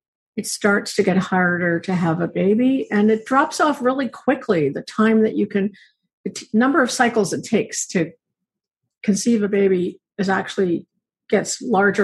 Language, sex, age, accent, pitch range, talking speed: English, female, 50-69, American, 190-250 Hz, 170 wpm